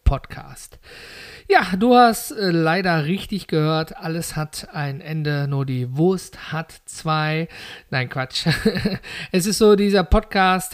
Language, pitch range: German, 145-180 Hz